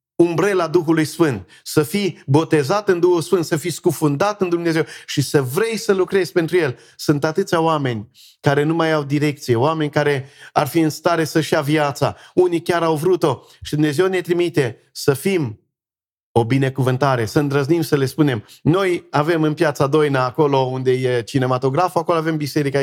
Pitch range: 145-180 Hz